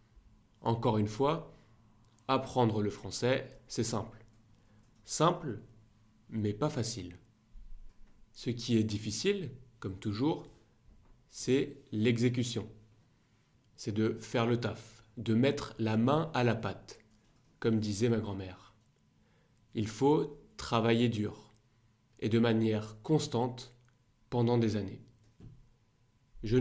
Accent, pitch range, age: French, 110-130 Hz, 30-49